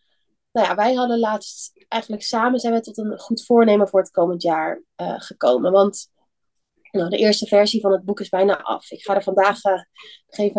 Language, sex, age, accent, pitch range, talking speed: Dutch, female, 20-39, Dutch, 195-225 Hz, 200 wpm